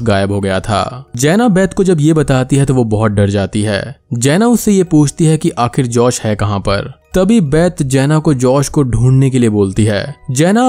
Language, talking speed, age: Hindi, 55 wpm, 20-39